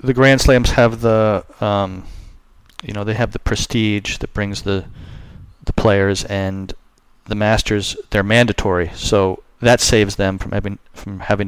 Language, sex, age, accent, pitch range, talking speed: English, male, 40-59, American, 95-120 Hz, 155 wpm